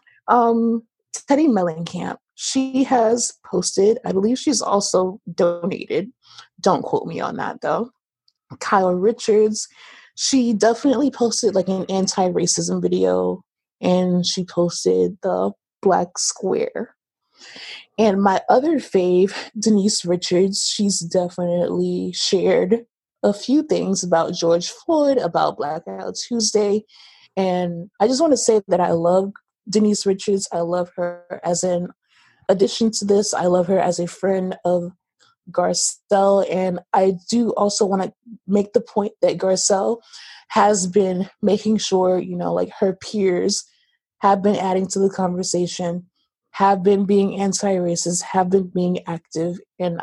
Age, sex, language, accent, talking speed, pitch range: 20-39, female, English, American, 135 wpm, 180-215 Hz